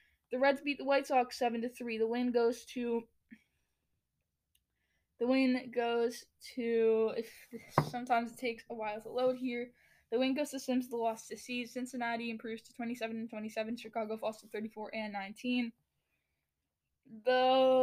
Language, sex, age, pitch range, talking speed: English, female, 10-29, 225-250 Hz, 155 wpm